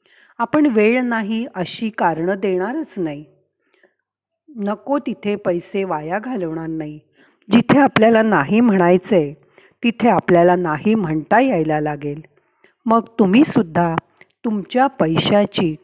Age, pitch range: 40-59, 170-235 Hz